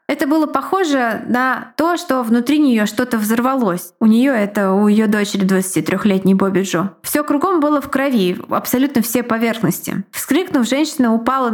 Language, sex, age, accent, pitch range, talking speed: Russian, female, 20-39, native, 205-255 Hz, 160 wpm